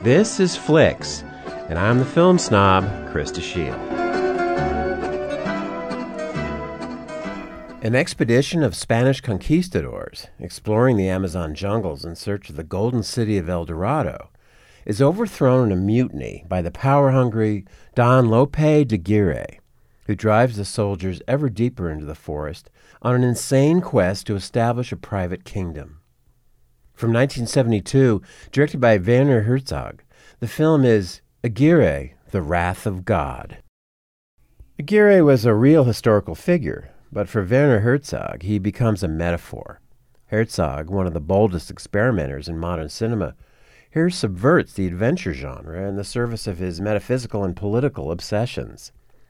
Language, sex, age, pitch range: English, male, 50-69, 90-130 Hz